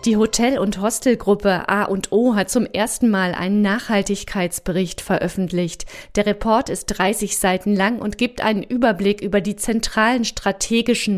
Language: German